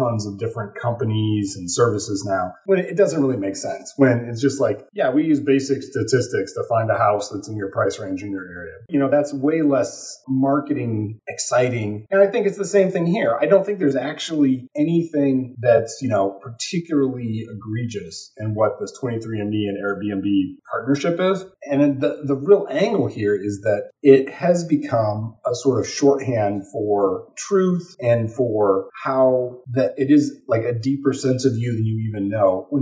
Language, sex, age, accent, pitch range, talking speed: English, male, 30-49, American, 105-145 Hz, 185 wpm